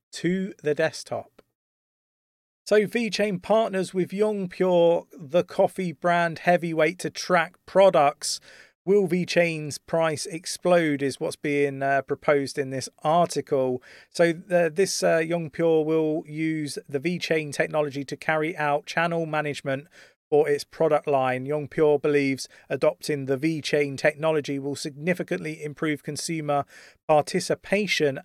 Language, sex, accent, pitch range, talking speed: English, male, British, 140-170 Hz, 130 wpm